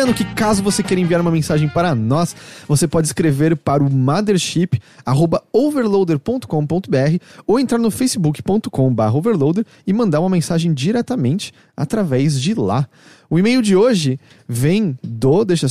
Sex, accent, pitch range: male, Brazilian, 145-205 Hz